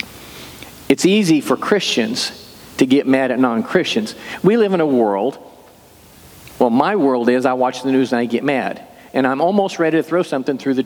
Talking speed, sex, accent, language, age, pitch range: 195 wpm, male, American, English, 50-69, 125-165 Hz